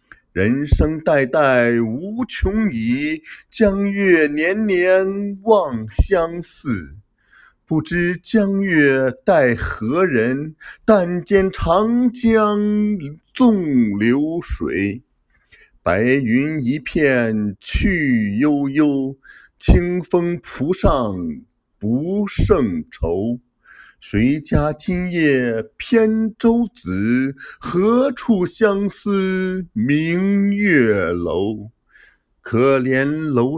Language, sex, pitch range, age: Chinese, male, 125-200 Hz, 50-69